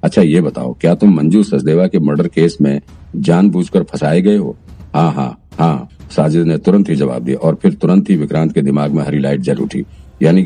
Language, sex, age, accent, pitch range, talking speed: Hindi, male, 50-69, native, 75-90 Hz, 220 wpm